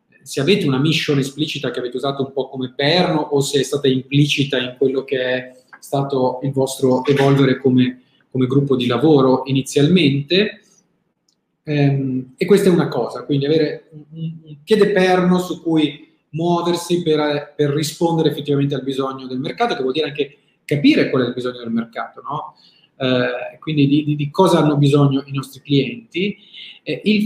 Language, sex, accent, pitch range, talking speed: Italian, male, native, 140-185 Hz, 165 wpm